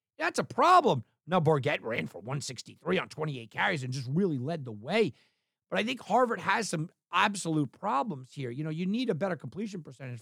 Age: 50-69